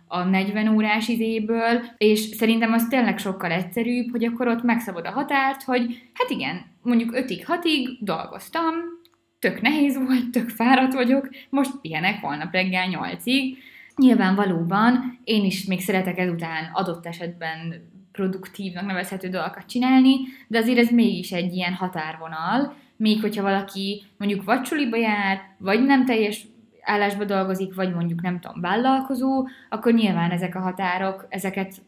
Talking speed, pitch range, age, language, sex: 145 wpm, 185-235 Hz, 20-39, Hungarian, female